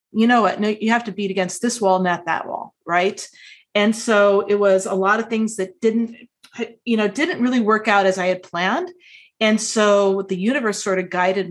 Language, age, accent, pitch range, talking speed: English, 30-49, American, 180-220 Hz, 220 wpm